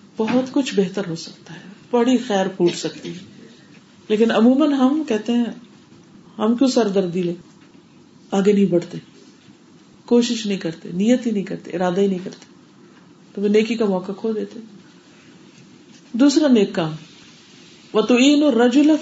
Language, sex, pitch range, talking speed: Urdu, female, 180-235 Hz, 145 wpm